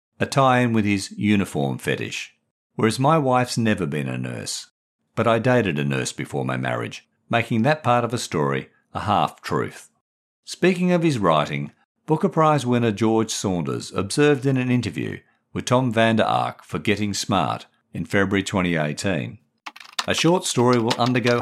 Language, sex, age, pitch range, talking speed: English, male, 50-69, 100-140 Hz, 170 wpm